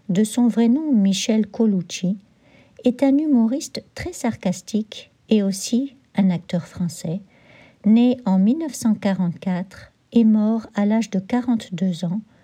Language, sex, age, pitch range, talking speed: English, female, 60-79, 190-235 Hz, 125 wpm